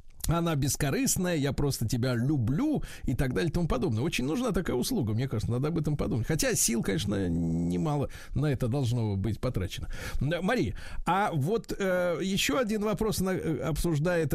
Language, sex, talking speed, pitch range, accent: Russian, male, 165 wpm, 125-185 Hz, native